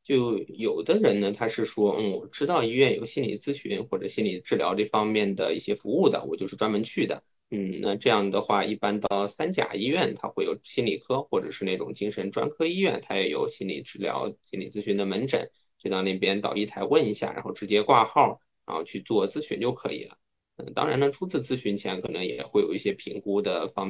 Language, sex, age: Chinese, male, 20-39